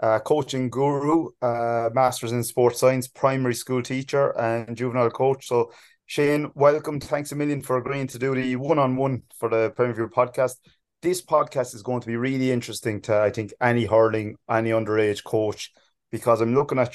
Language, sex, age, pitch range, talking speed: English, male, 30-49, 110-130 Hz, 180 wpm